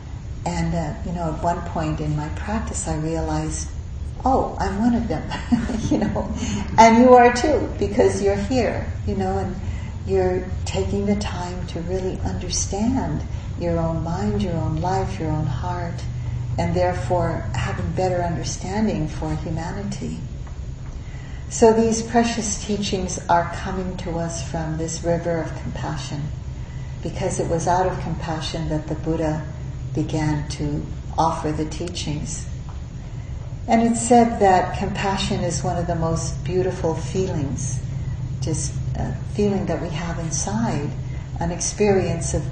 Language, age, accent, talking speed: English, 50-69, American, 145 wpm